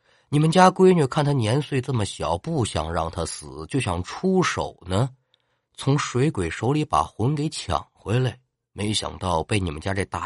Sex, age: male, 50-69